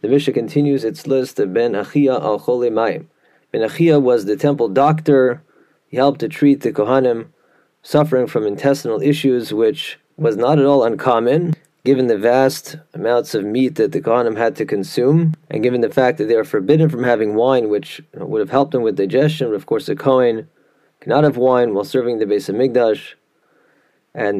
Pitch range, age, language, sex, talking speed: 125-150 Hz, 30-49, English, male, 190 wpm